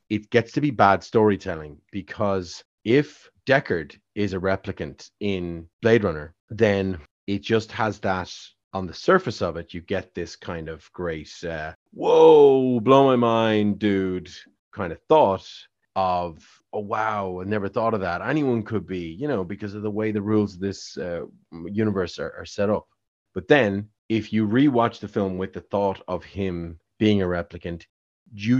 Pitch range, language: 90-110 Hz, English